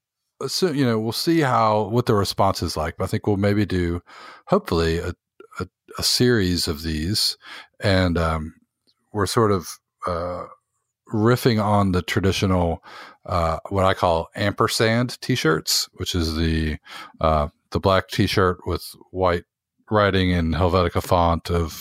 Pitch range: 85-105 Hz